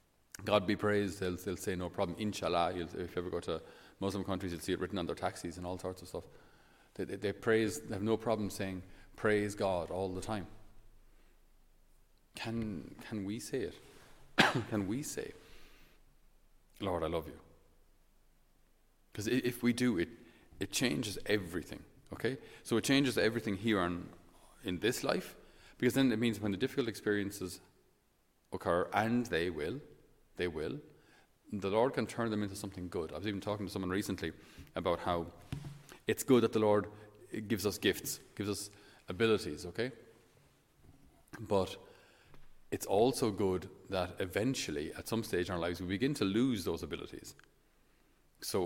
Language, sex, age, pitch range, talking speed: English, male, 40-59, 90-110 Hz, 165 wpm